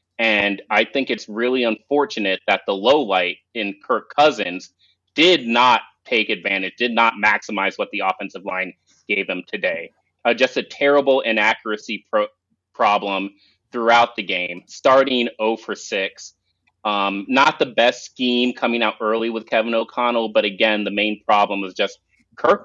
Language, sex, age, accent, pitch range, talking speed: English, male, 30-49, American, 105-125 Hz, 155 wpm